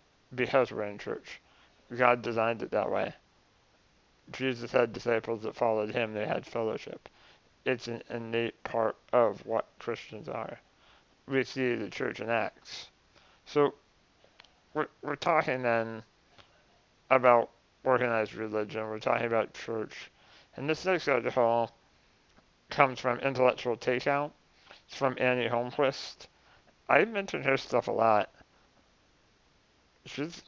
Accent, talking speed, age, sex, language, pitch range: American, 125 wpm, 40-59, male, English, 115-130 Hz